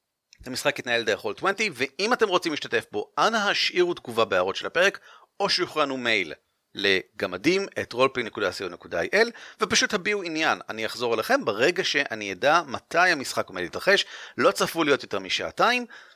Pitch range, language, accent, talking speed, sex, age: 135-210 Hz, Hebrew, native, 150 wpm, male, 40-59